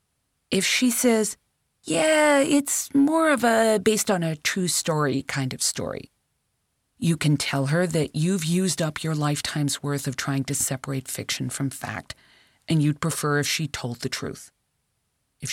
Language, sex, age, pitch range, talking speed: English, female, 40-59, 140-185 Hz, 155 wpm